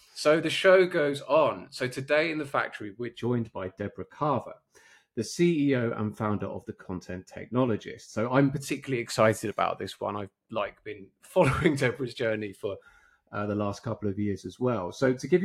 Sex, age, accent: male, 30-49, British